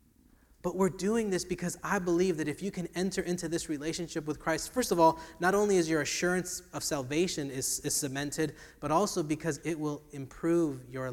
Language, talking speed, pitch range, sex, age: English, 200 wpm, 135-170 Hz, male, 20-39